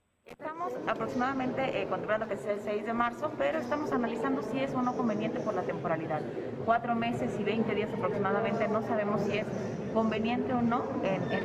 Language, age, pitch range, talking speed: Spanish, 30-49, 210-280 Hz, 190 wpm